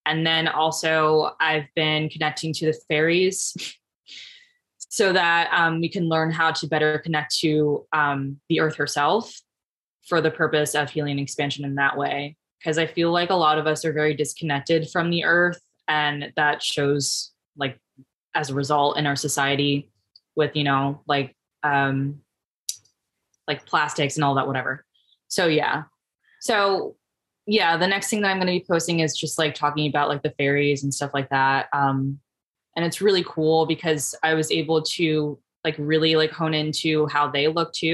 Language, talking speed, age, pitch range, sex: English, 175 wpm, 20-39, 145-160 Hz, female